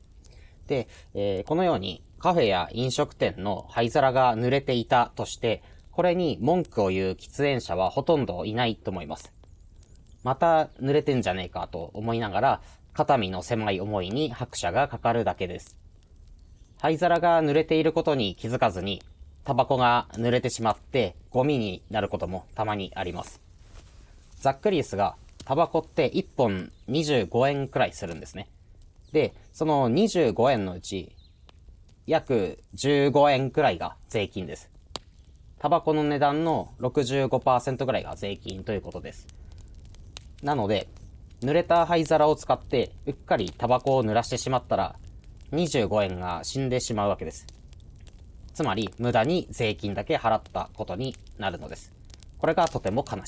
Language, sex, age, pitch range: Japanese, male, 30-49, 90-135 Hz